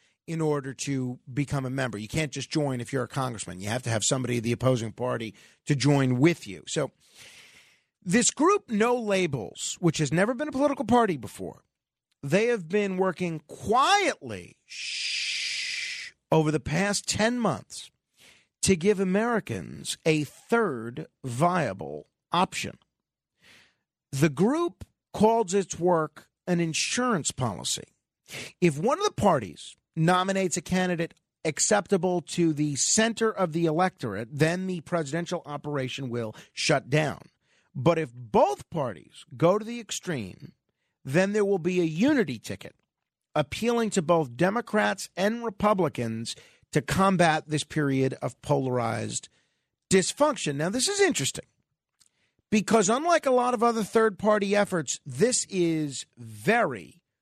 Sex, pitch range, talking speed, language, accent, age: male, 140-210 Hz, 135 wpm, English, American, 40-59